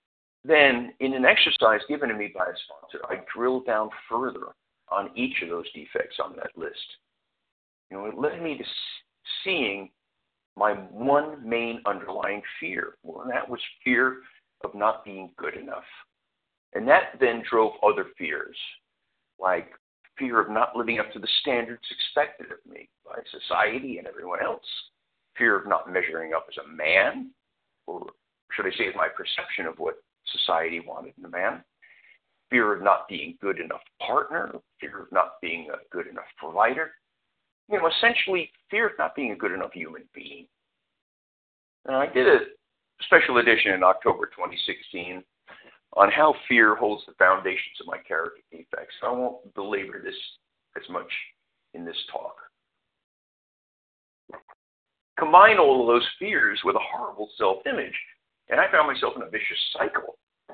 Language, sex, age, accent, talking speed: English, male, 50-69, American, 160 wpm